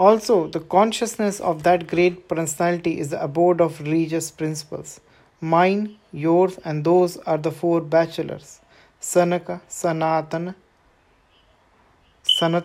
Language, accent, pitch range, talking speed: English, Indian, 155-180 Hz, 110 wpm